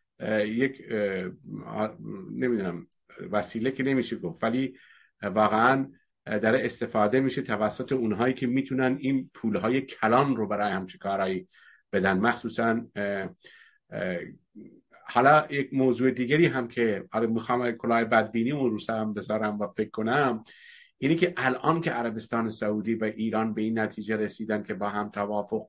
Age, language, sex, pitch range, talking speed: 50-69, Persian, male, 110-135 Hz, 135 wpm